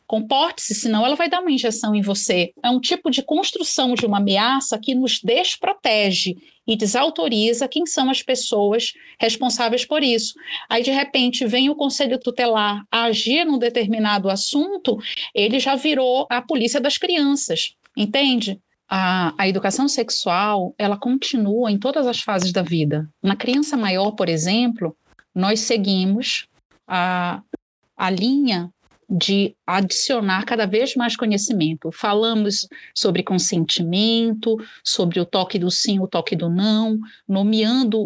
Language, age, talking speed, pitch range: Portuguese, 40-59, 140 wpm, 195-255 Hz